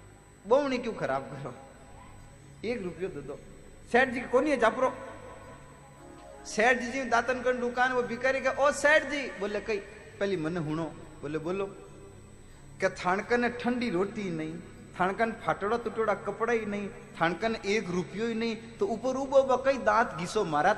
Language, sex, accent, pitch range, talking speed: Hindi, male, native, 155-230 Hz, 115 wpm